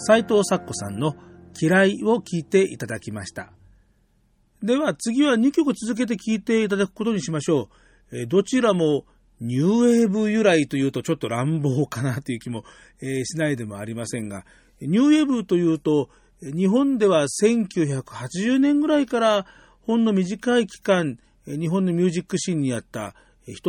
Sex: male